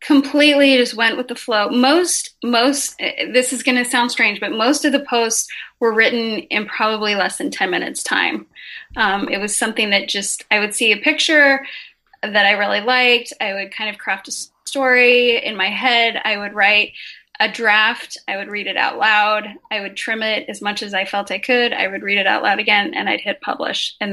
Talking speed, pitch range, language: 215 wpm, 210-255 Hz, English